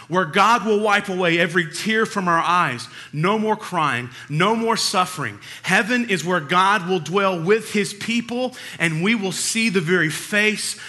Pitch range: 150-205 Hz